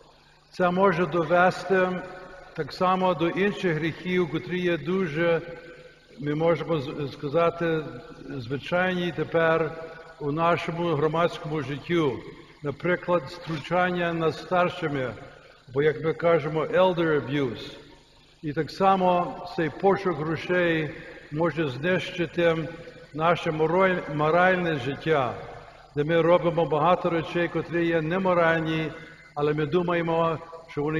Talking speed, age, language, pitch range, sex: 105 wpm, 60-79, Ukrainian, 155-175 Hz, male